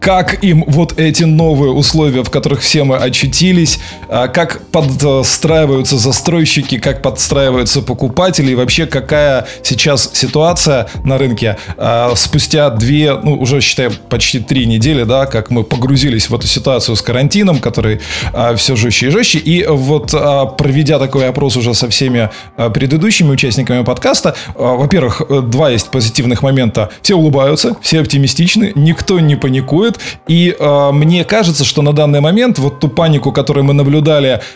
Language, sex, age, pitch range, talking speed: Russian, male, 20-39, 130-155 Hz, 145 wpm